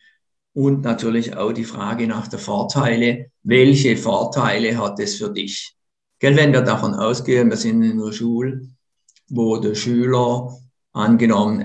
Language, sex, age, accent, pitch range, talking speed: German, male, 50-69, German, 115-145 Hz, 140 wpm